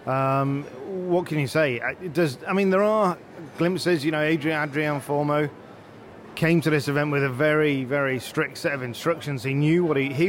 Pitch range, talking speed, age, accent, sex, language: 140-170 Hz, 190 wpm, 30-49, British, male, English